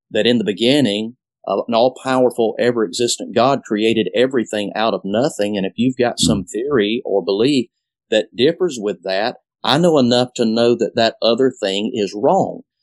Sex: male